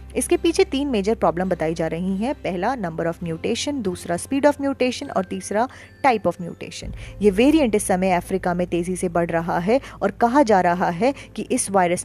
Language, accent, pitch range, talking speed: Hindi, native, 180-255 Hz, 200 wpm